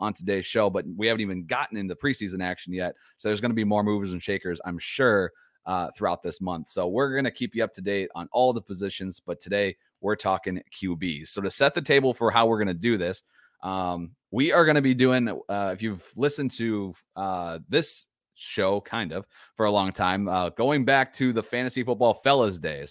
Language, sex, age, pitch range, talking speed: English, male, 30-49, 95-120 Hz, 215 wpm